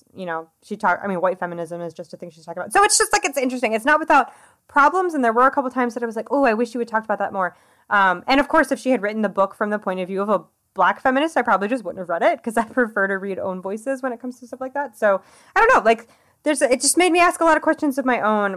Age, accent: 20-39, American